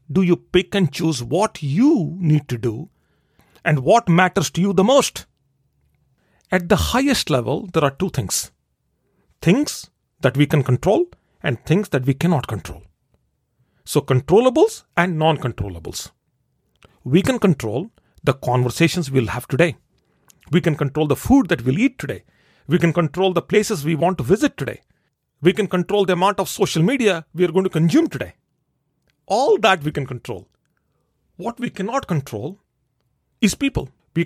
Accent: Indian